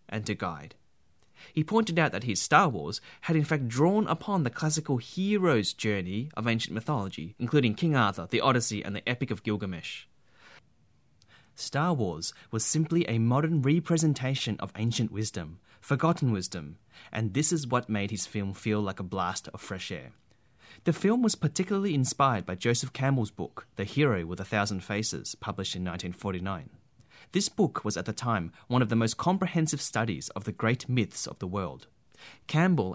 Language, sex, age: English, male, 30-49